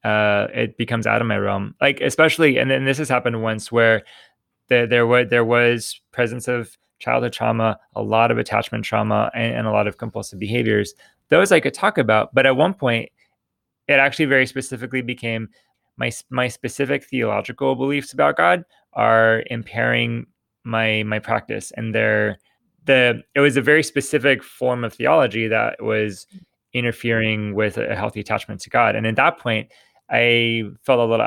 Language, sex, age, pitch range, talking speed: English, male, 20-39, 105-130 Hz, 175 wpm